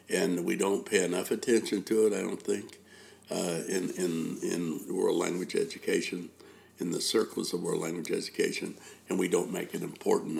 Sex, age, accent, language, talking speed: male, 60-79, American, English, 180 wpm